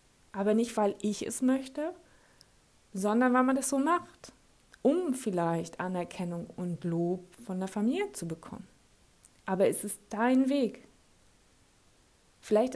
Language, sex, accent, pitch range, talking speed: German, female, German, 195-255 Hz, 130 wpm